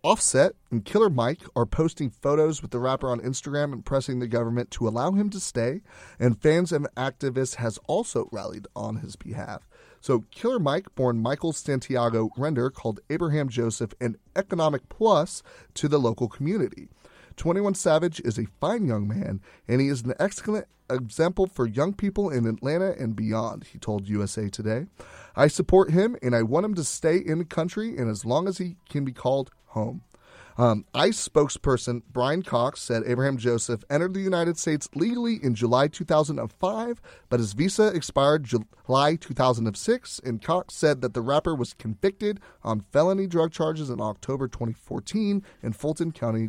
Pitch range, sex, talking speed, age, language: 120-170 Hz, male, 170 wpm, 30-49, English